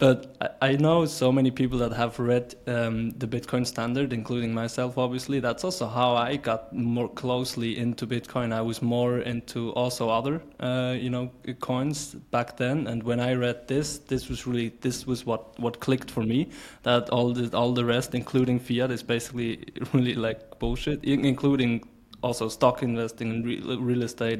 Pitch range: 115-130 Hz